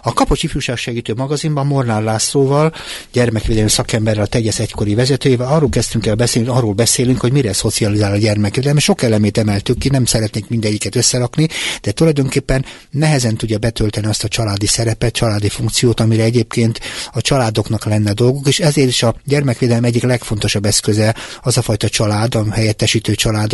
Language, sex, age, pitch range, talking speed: Hungarian, male, 60-79, 105-130 Hz, 160 wpm